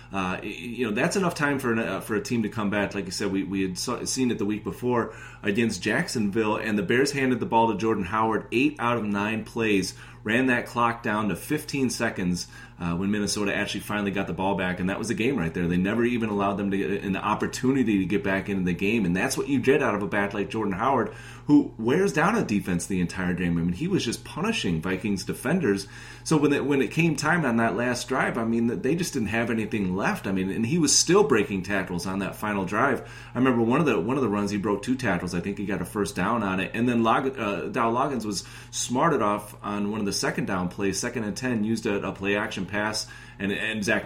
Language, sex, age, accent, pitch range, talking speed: English, male, 30-49, American, 100-120 Hz, 260 wpm